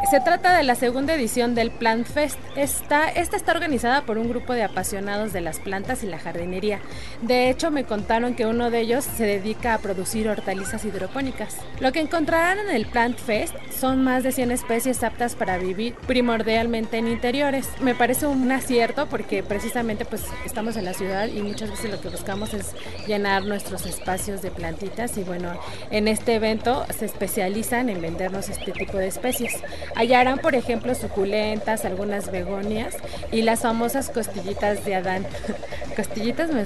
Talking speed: 175 wpm